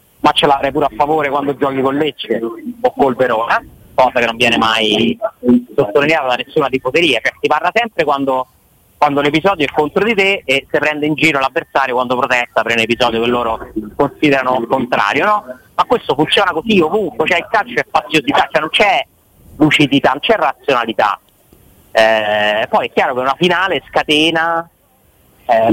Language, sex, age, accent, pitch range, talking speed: Italian, male, 30-49, native, 130-160 Hz, 175 wpm